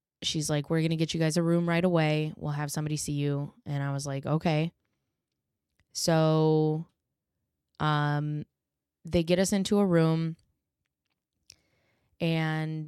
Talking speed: 145 wpm